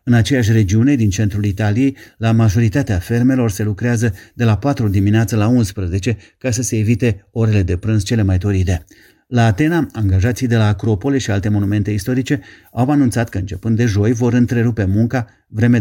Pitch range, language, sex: 105-125 Hz, Romanian, male